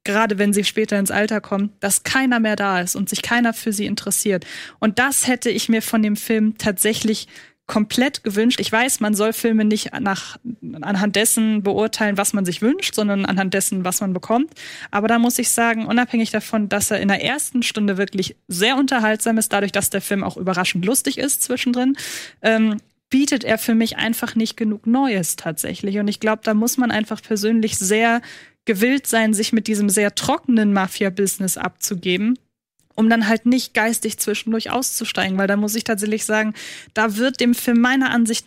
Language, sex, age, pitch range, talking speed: German, female, 20-39, 210-240 Hz, 190 wpm